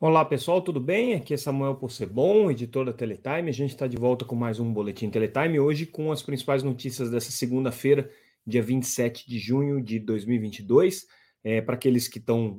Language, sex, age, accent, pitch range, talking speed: Portuguese, male, 30-49, Brazilian, 110-135 Hz, 185 wpm